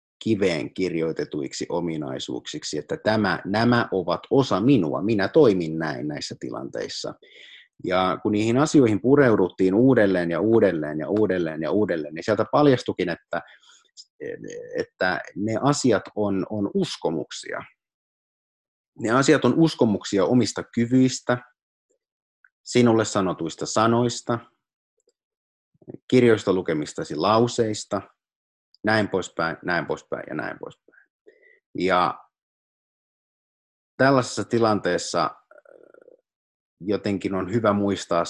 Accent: native